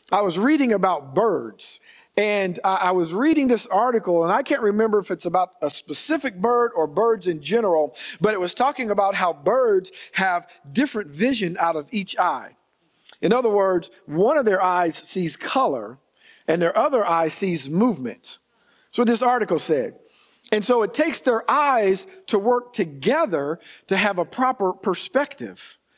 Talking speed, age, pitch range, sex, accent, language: 165 wpm, 50-69, 190-255 Hz, male, American, English